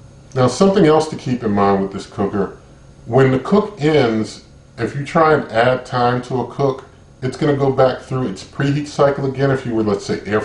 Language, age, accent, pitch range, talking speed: English, 40-59, American, 110-135 Hz, 225 wpm